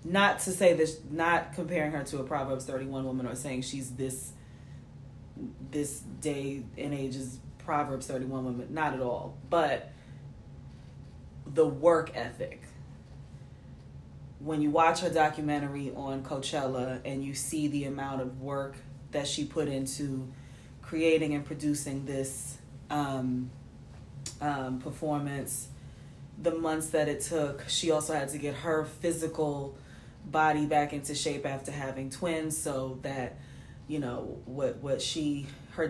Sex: female